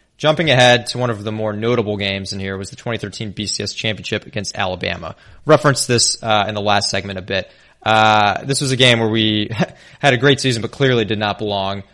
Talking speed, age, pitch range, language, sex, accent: 215 wpm, 20-39, 105-120 Hz, English, male, American